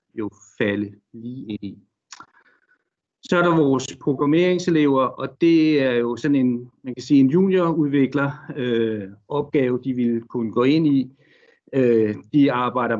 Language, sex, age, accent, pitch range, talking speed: Danish, male, 60-79, native, 115-145 Hz, 130 wpm